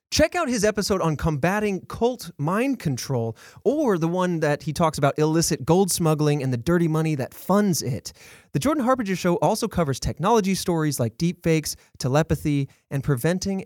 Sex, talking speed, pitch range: male, 170 wpm, 130-190 Hz